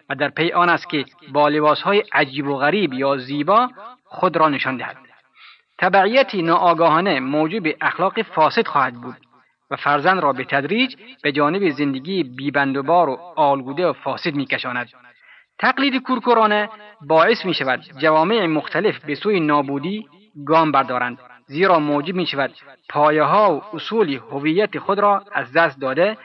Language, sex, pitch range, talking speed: Persian, male, 145-185 Hz, 150 wpm